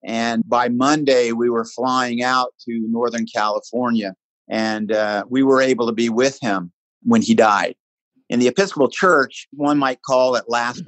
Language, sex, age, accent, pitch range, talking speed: English, male, 50-69, American, 115-130 Hz, 170 wpm